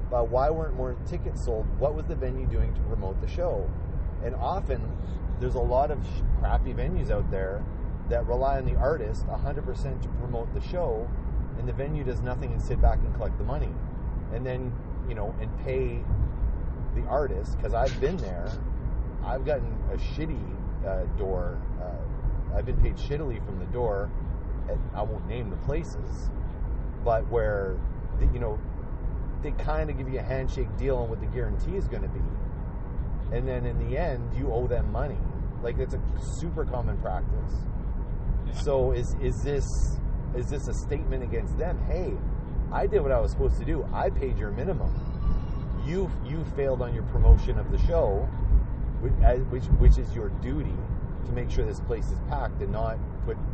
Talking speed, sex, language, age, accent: 180 wpm, male, English, 30-49, American